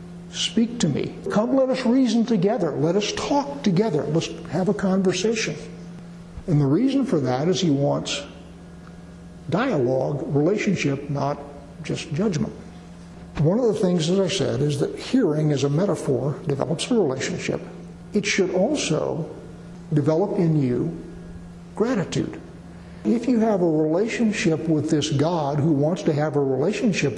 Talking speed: 145 wpm